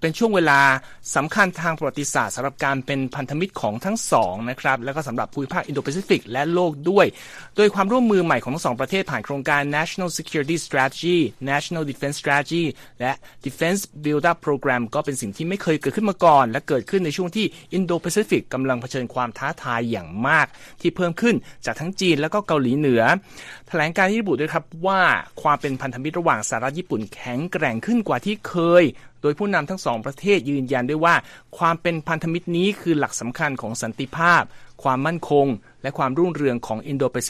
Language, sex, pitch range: Thai, male, 130-170 Hz